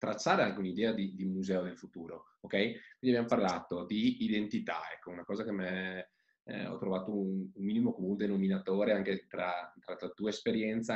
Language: Italian